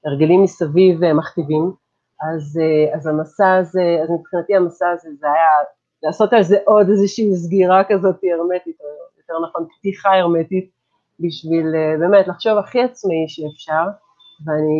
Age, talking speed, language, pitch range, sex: 40-59, 135 wpm, Hebrew, 165-205 Hz, female